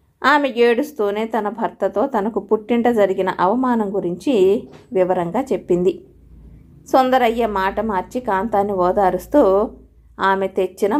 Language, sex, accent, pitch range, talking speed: Telugu, female, native, 185-240 Hz, 100 wpm